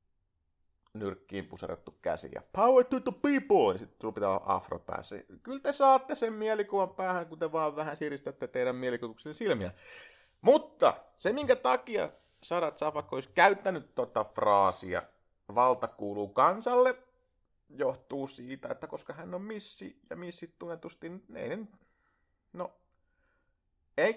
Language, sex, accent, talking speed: Finnish, male, native, 130 wpm